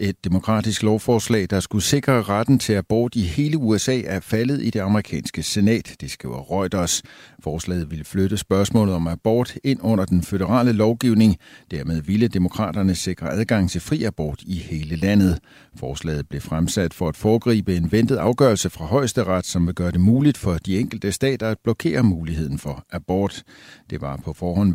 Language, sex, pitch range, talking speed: Danish, male, 85-110 Hz, 175 wpm